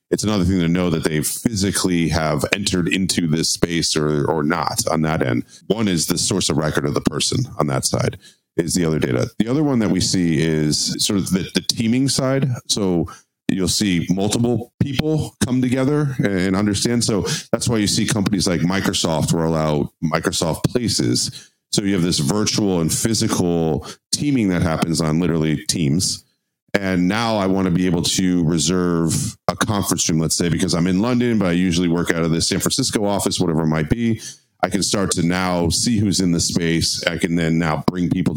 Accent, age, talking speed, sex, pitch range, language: American, 40-59, 205 wpm, male, 80-100 Hz, English